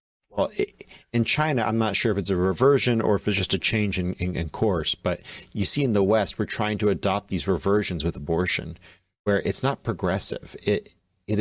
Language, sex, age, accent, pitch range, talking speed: English, male, 40-59, American, 90-115 Hz, 210 wpm